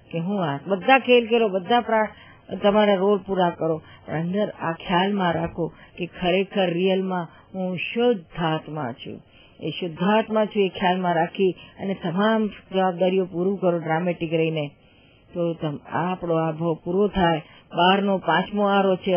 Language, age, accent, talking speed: Gujarati, 50-69, native, 50 wpm